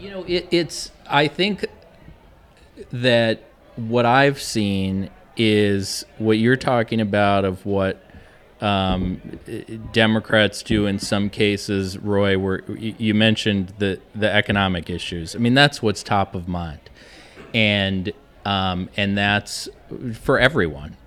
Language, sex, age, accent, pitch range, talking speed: English, male, 30-49, American, 95-110 Hz, 120 wpm